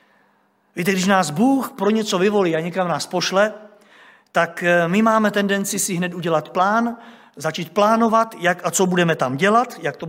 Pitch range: 185-230 Hz